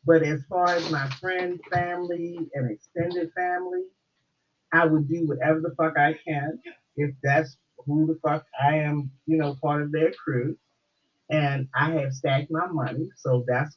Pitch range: 145-175 Hz